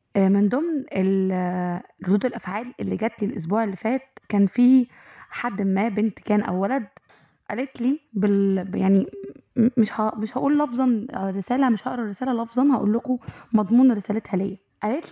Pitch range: 210-275 Hz